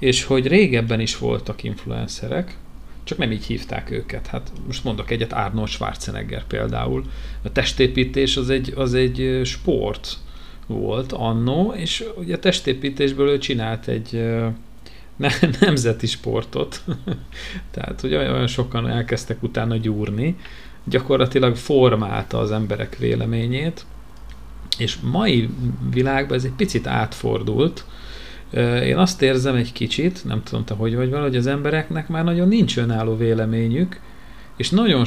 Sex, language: male, Hungarian